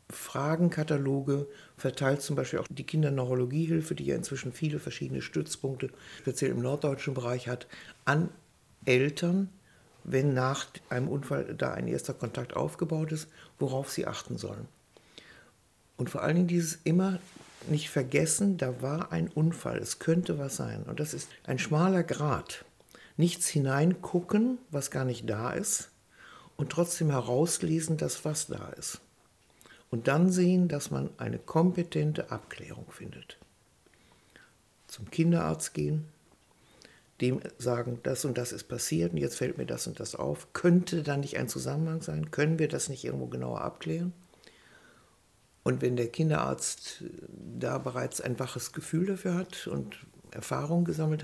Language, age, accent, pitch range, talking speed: German, 60-79, German, 125-170 Hz, 145 wpm